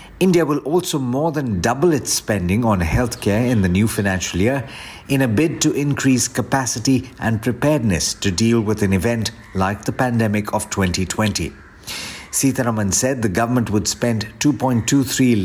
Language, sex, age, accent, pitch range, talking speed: English, male, 50-69, Indian, 100-125 Hz, 155 wpm